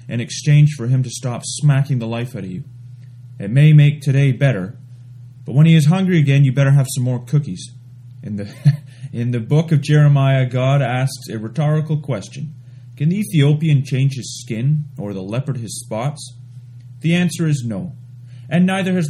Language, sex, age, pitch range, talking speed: English, male, 30-49, 120-150 Hz, 185 wpm